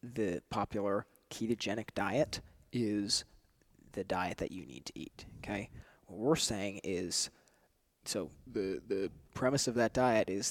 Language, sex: English, male